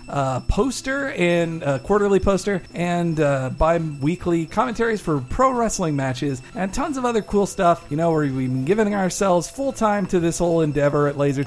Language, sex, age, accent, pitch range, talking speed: English, male, 50-69, American, 155-225 Hz, 190 wpm